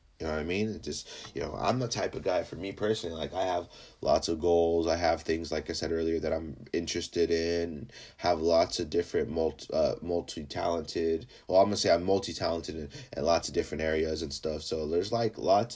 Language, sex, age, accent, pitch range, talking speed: English, male, 30-49, American, 85-115 Hz, 230 wpm